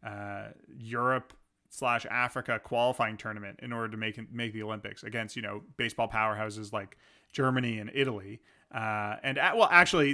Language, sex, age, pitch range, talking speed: English, male, 30-49, 110-135 Hz, 165 wpm